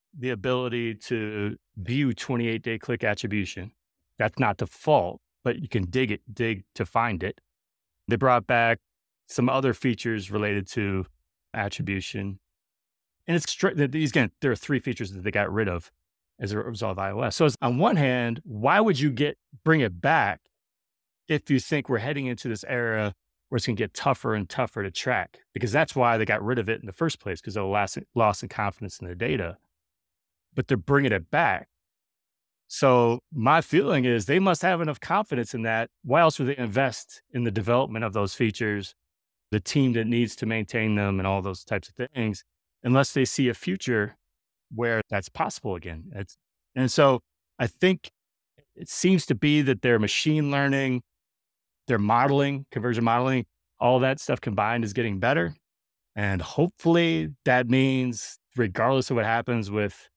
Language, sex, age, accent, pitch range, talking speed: English, male, 30-49, American, 100-130 Hz, 180 wpm